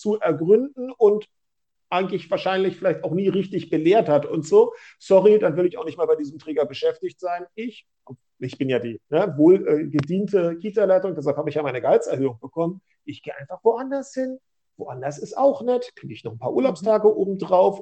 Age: 40-59